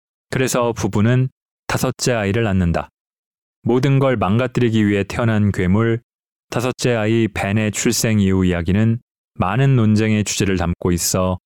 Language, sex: Korean, male